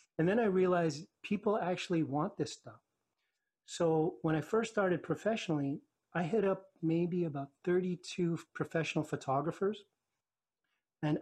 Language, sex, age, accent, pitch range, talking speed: English, male, 30-49, American, 140-170 Hz, 130 wpm